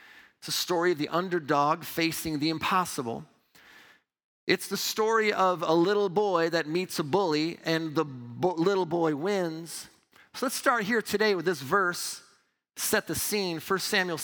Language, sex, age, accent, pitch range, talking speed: English, male, 40-59, American, 165-220 Hz, 165 wpm